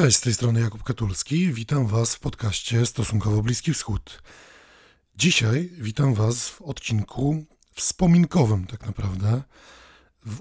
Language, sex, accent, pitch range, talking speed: Polish, male, native, 110-140 Hz, 125 wpm